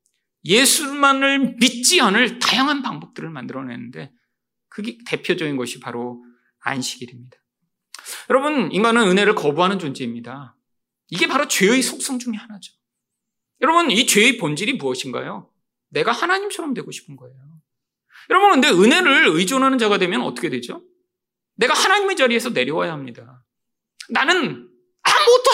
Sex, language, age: male, Korean, 40-59